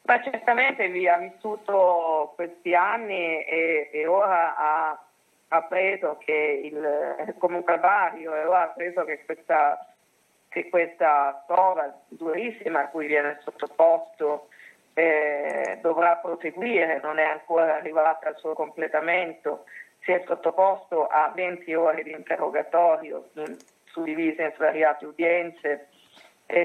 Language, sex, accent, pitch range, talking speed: Italian, female, native, 150-175 Hz, 115 wpm